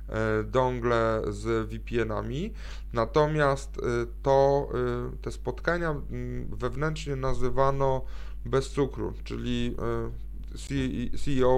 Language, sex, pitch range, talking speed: Polish, male, 115-140 Hz, 65 wpm